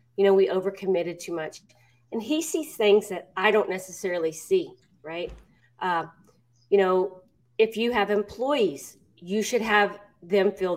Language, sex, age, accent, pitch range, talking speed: English, female, 40-59, American, 175-215 Hz, 155 wpm